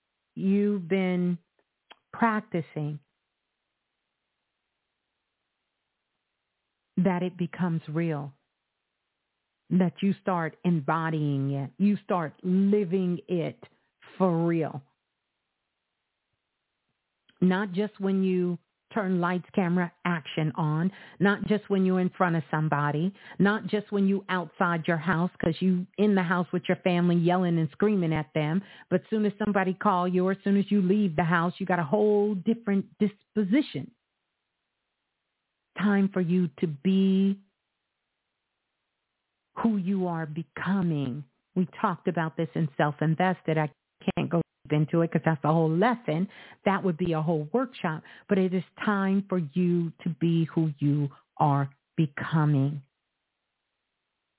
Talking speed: 130 wpm